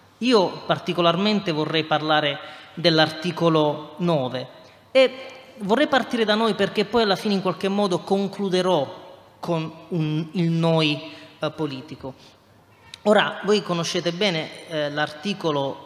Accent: native